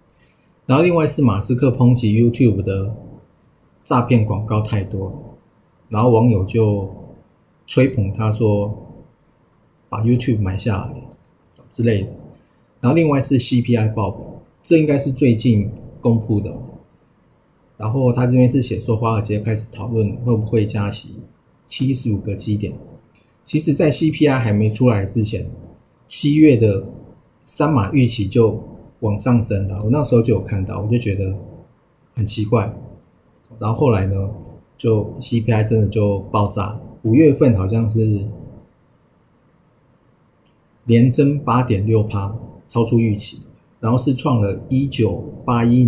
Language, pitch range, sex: Chinese, 105-125 Hz, male